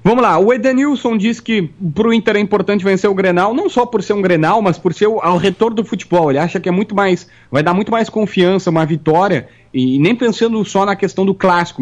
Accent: Brazilian